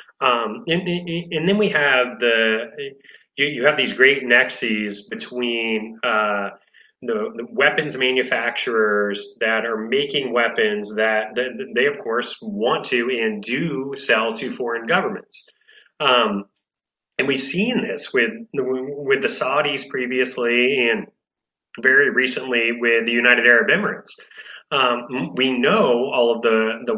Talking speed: 135 wpm